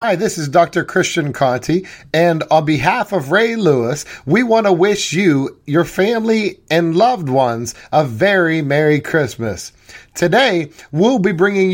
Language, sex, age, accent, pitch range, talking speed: English, male, 30-49, American, 135-185 Hz, 155 wpm